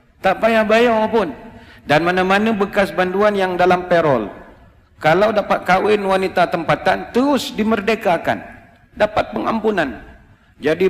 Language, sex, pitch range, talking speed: Malay, male, 150-200 Hz, 115 wpm